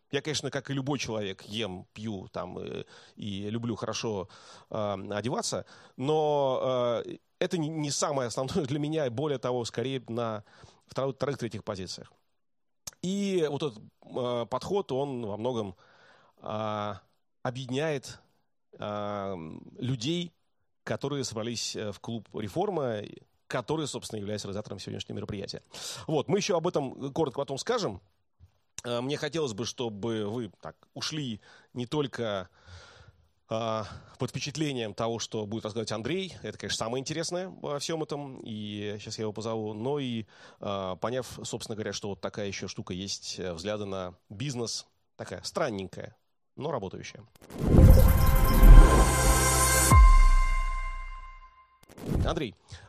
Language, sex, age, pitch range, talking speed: English, male, 30-49, 105-140 Hz, 125 wpm